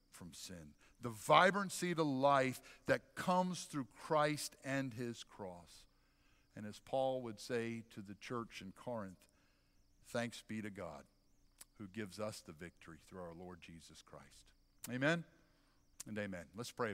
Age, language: 60-79, English